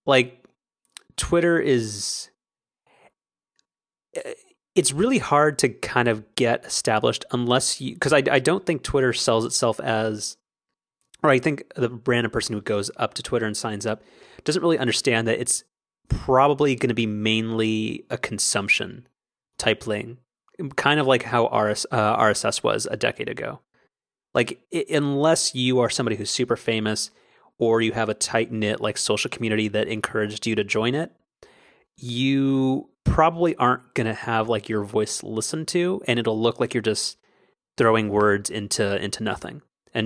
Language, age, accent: English, 30-49, American